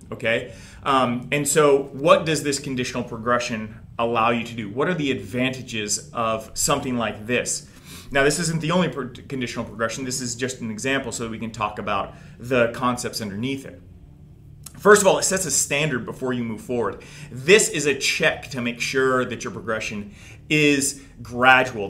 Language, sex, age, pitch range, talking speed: English, male, 30-49, 120-145 Hz, 180 wpm